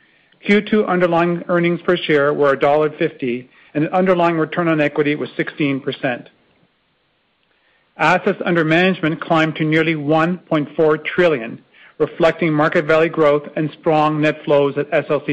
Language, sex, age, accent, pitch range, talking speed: English, male, 40-59, American, 145-175 Hz, 130 wpm